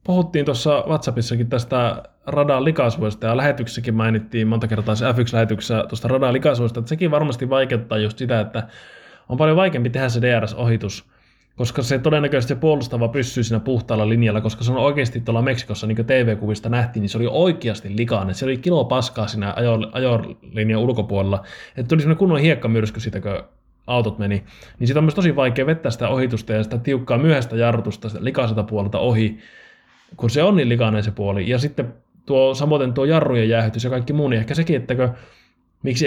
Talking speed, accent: 185 wpm, native